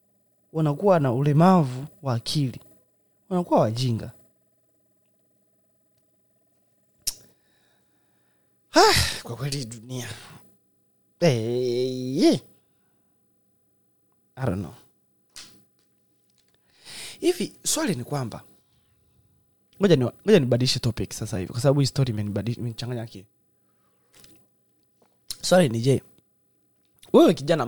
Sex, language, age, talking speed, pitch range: male, Swahili, 30-49, 80 wpm, 110-160 Hz